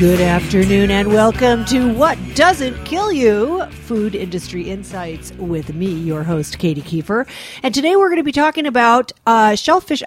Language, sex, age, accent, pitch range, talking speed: English, female, 50-69, American, 180-235 Hz, 165 wpm